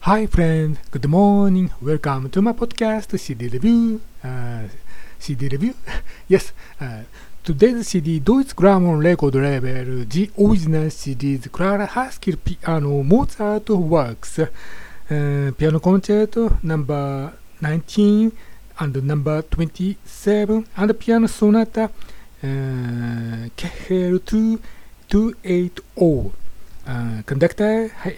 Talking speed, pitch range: 100 wpm, 140-200 Hz